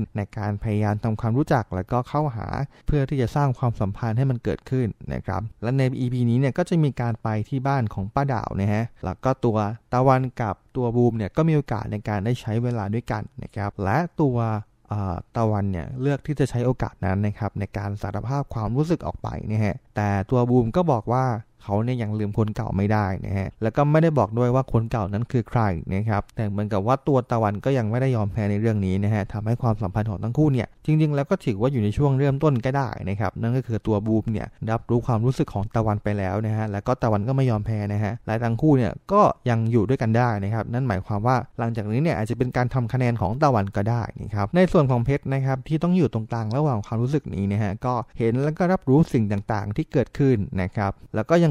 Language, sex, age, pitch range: English, male, 20-39, 105-130 Hz